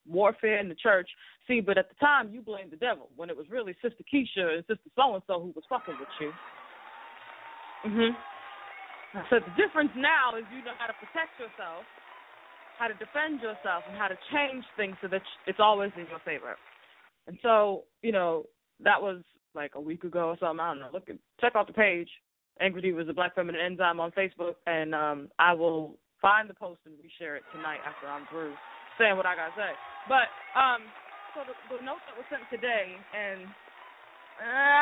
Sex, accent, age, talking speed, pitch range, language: female, American, 20-39, 205 wpm, 170-260 Hz, English